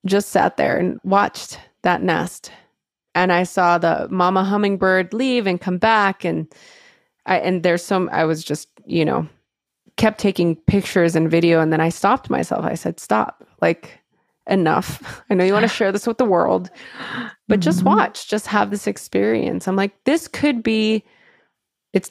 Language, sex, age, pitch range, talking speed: English, female, 20-39, 170-220 Hz, 175 wpm